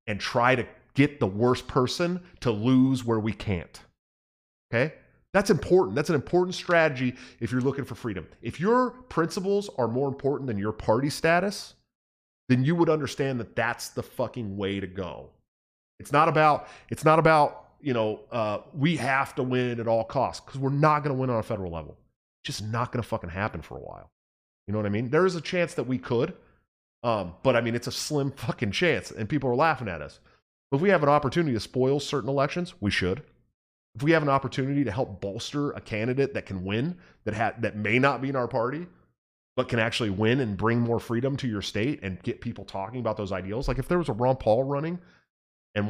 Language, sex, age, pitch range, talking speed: English, male, 30-49, 105-145 Hz, 220 wpm